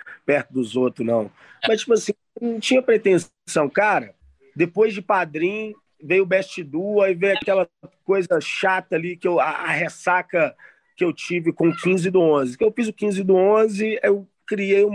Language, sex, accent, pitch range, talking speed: Portuguese, male, Brazilian, 165-220 Hz, 185 wpm